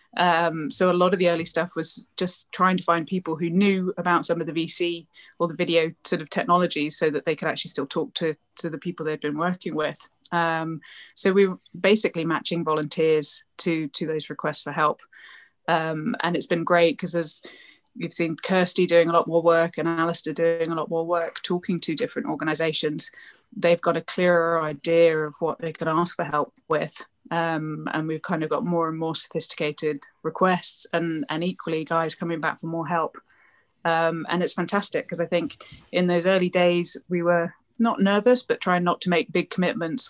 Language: English